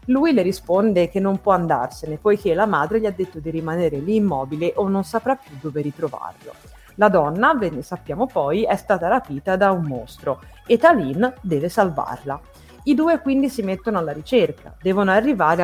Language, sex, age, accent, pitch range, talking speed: Italian, female, 30-49, native, 160-225 Hz, 185 wpm